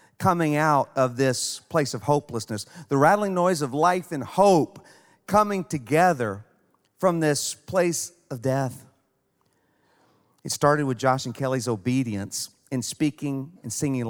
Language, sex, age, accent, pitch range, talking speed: English, male, 40-59, American, 125-155 Hz, 135 wpm